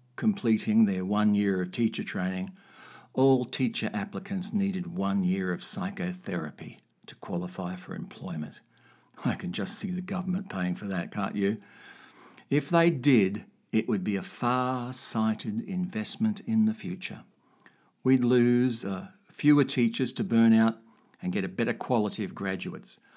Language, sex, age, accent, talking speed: English, male, 60-79, Australian, 145 wpm